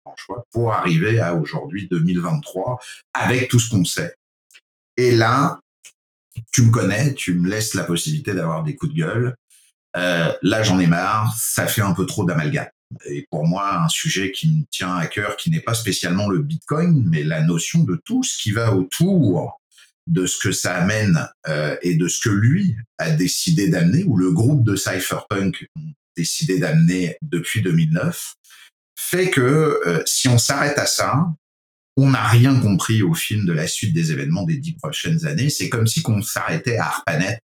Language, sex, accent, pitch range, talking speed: French, male, French, 100-160 Hz, 185 wpm